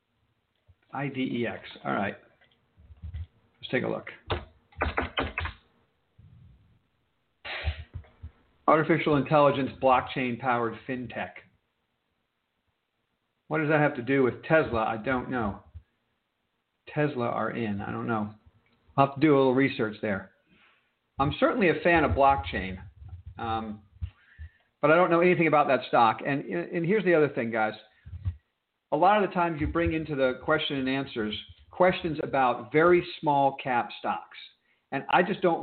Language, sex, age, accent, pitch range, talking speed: English, male, 50-69, American, 105-150 Hz, 135 wpm